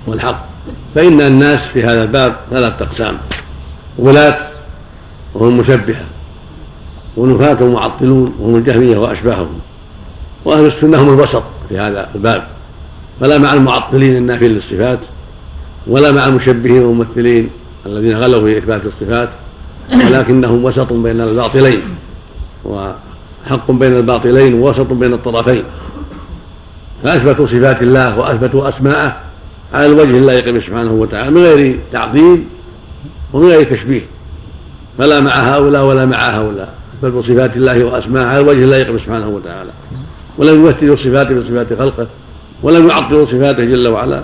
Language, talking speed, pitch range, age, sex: Arabic, 125 wpm, 100-135 Hz, 70-89, male